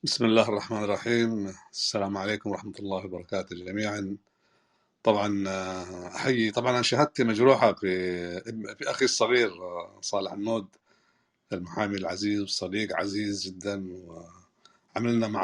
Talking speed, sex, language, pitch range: 105 wpm, male, Arabic, 95-110 Hz